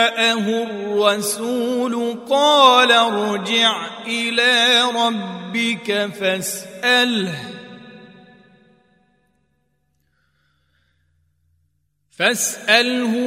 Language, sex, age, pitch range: Arabic, male, 40-59, 205-240 Hz